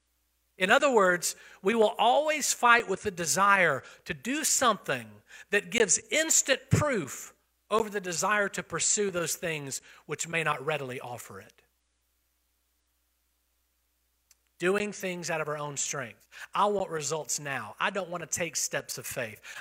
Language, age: English, 40-59